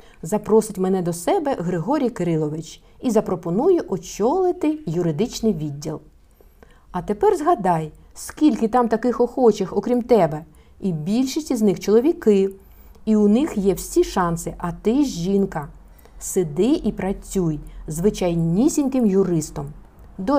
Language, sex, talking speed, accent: Ukrainian, female, 125 wpm, native